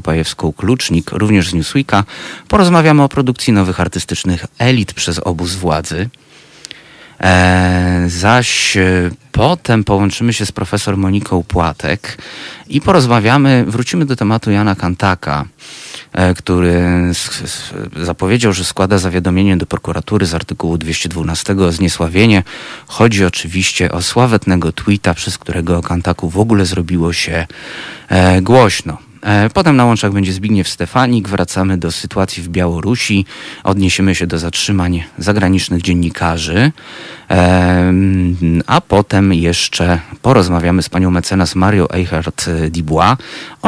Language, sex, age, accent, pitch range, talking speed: Polish, male, 30-49, native, 85-105 Hz, 120 wpm